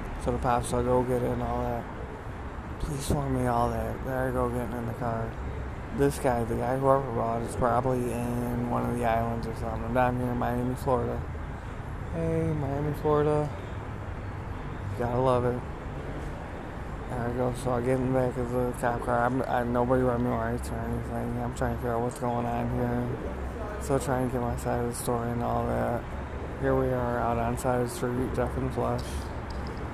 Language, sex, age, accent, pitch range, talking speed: English, male, 20-39, American, 115-125 Hz, 215 wpm